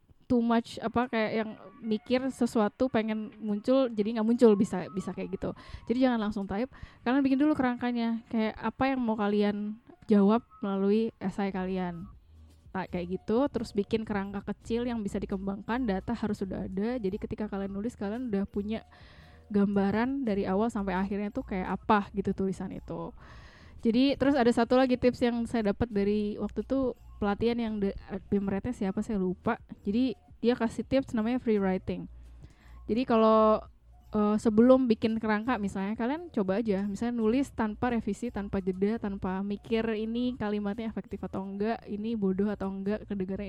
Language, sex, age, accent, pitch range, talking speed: Indonesian, female, 10-29, native, 195-235 Hz, 165 wpm